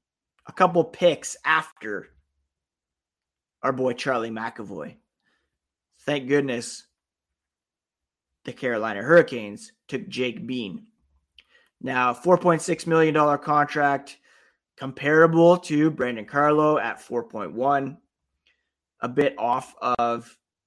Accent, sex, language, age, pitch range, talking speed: American, male, English, 20-39, 100-150 Hz, 85 wpm